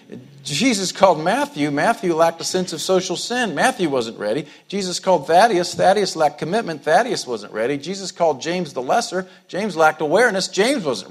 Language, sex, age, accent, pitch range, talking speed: English, male, 50-69, American, 160-205 Hz, 175 wpm